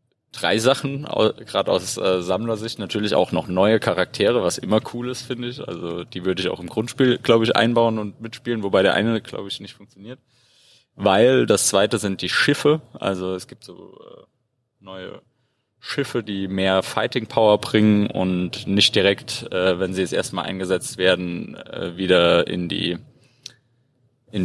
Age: 30-49